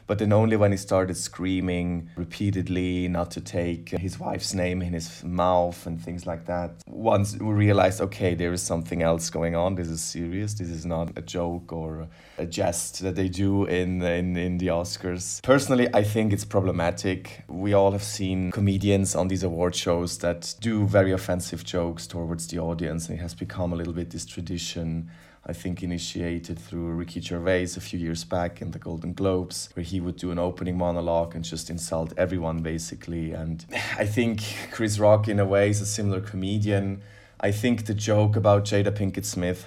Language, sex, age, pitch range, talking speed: English, male, 30-49, 85-100 Hz, 190 wpm